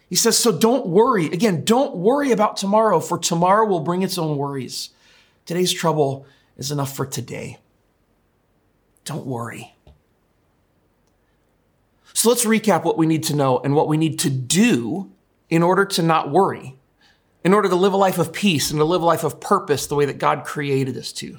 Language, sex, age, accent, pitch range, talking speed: English, male, 30-49, American, 150-215 Hz, 185 wpm